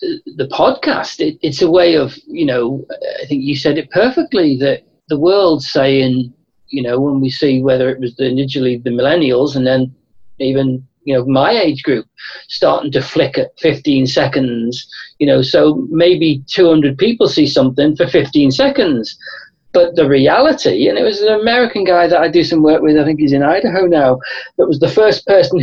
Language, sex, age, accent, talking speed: English, male, 40-59, British, 185 wpm